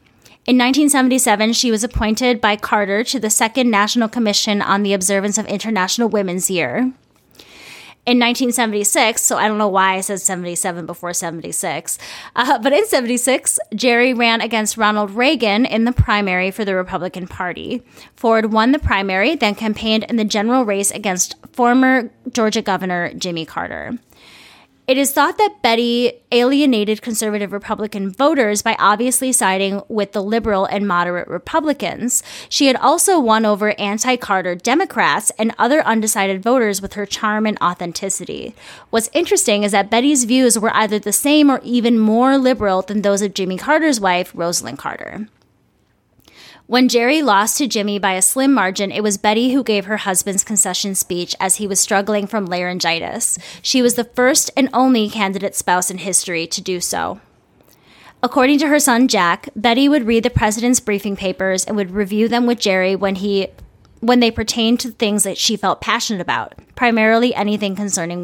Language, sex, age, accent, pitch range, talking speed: English, female, 20-39, American, 195-245 Hz, 165 wpm